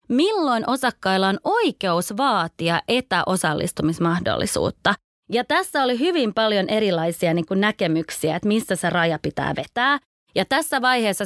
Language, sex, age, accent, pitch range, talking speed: Finnish, female, 20-39, native, 175-220 Hz, 125 wpm